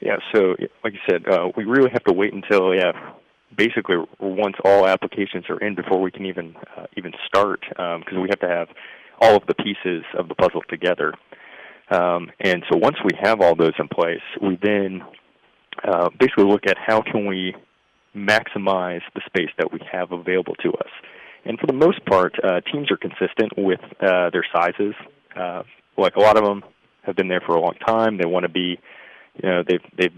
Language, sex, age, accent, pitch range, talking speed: English, male, 30-49, American, 90-100 Hz, 200 wpm